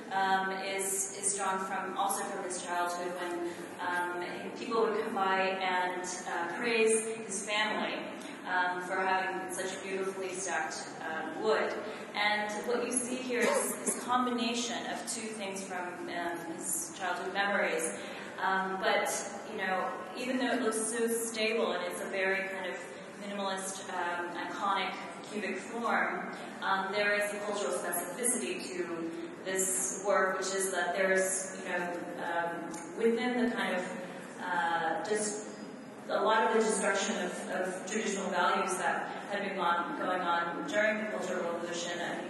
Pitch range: 180-215 Hz